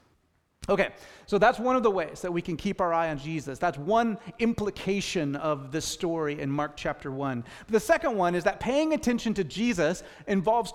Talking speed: 200 wpm